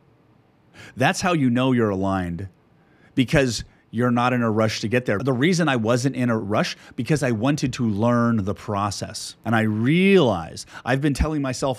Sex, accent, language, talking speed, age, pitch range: male, American, English, 185 wpm, 30-49, 110-145 Hz